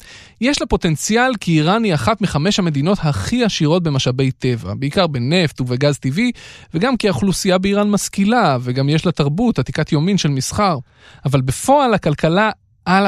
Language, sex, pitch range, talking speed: Hebrew, male, 130-195 Hz, 155 wpm